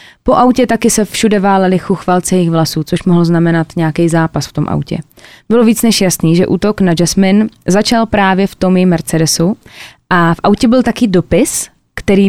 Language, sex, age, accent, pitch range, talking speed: Czech, female, 20-39, native, 170-220 Hz, 180 wpm